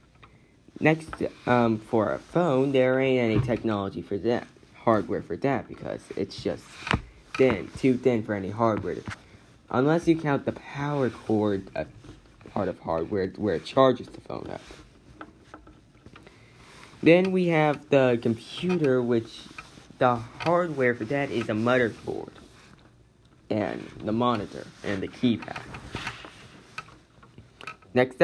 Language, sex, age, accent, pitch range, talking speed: English, male, 10-29, American, 115-140 Hz, 125 wpm